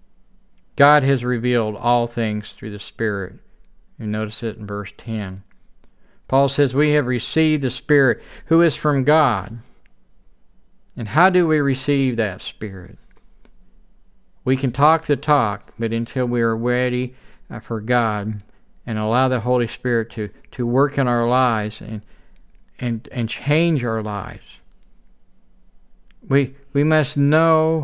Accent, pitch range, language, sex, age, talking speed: American, 110-140 Hz, English, male, 50-69, 140 wpm